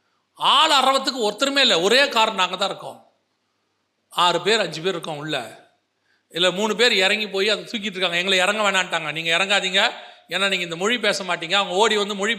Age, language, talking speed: 40-59, Tamil, 180 wpm